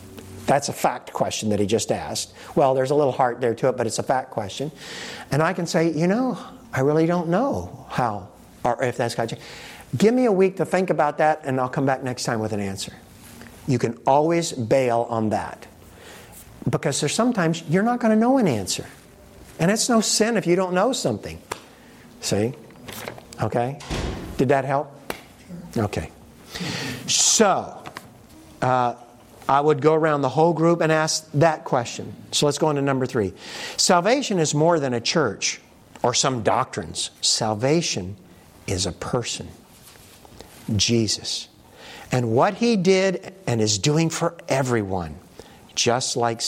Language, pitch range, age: English, 115-165 Hz, 60-79